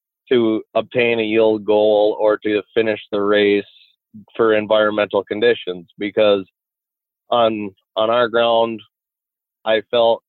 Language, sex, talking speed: English, male, 115 wpm